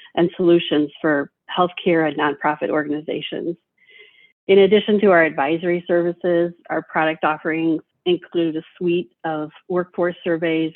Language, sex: English, female